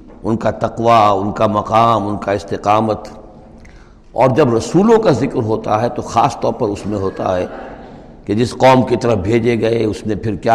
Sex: male